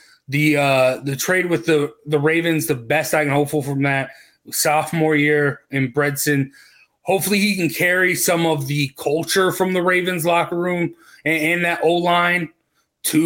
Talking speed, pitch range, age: 170 wpm, 160-200 Hz, 20-39